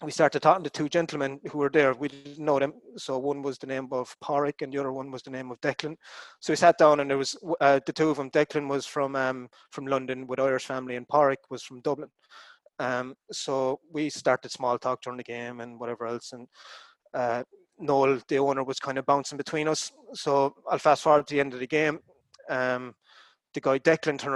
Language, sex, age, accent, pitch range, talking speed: English, male, 30-49, Irish, 130-155 Hz, 230 wpm